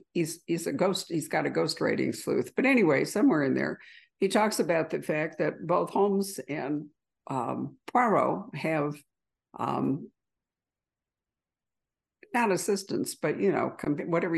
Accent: American